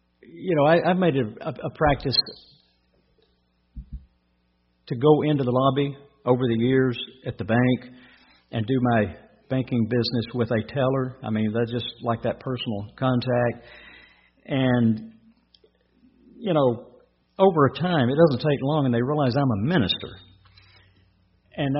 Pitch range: 105-145 Hz